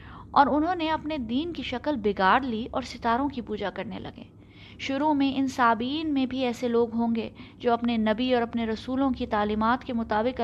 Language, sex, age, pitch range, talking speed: Urdu, female, 20-39, 220-265 Hz, 200 wpm